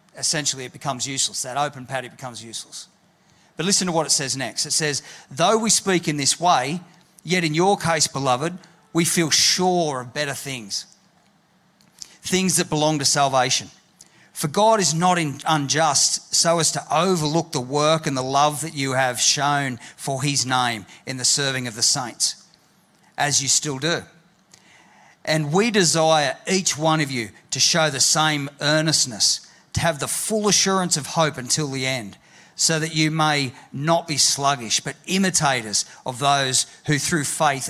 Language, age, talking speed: English, 40-59, 170 wpm